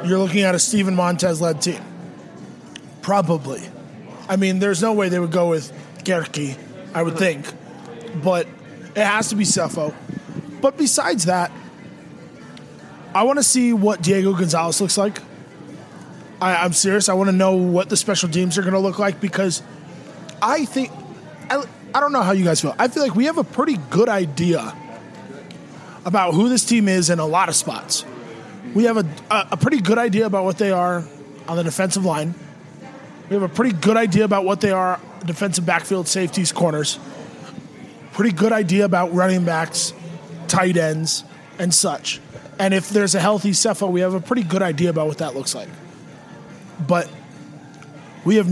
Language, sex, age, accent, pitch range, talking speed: English, male, 20-39, American, 170-200 Hz, 175 wpm